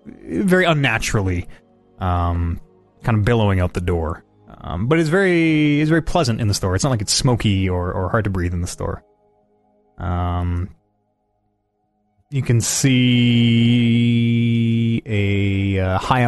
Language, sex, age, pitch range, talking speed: English, male, 20-39, 95-125 Hz, 145 wpm